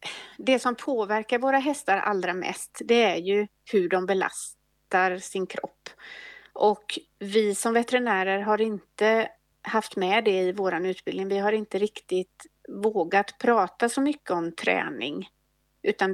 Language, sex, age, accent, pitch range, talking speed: English, female, 30-49, Swedish, 195-240 Hz, 140 wpm